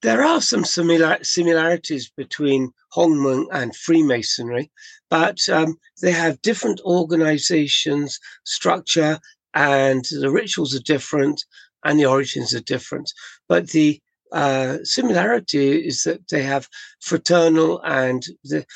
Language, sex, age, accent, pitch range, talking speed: English, male, 60-79, British, 135-170 Hz, 115 wpm